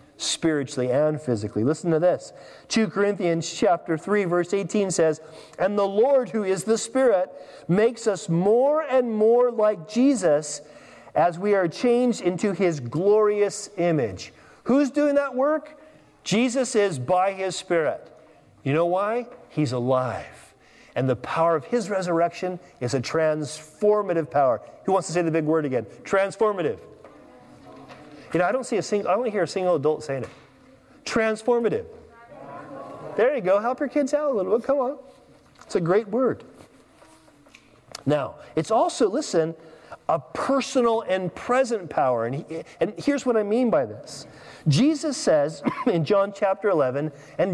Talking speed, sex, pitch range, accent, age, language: 160 wpm, male, 165-245 Hz, American, 40-59, English